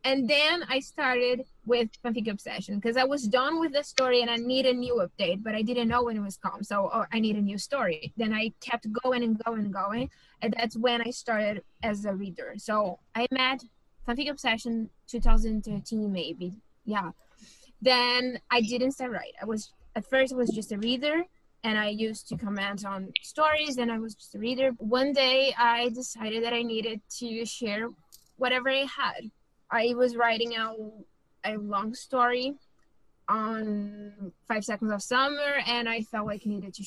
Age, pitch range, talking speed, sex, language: 20-39, 215-255 Hz, 190 wpm, female, English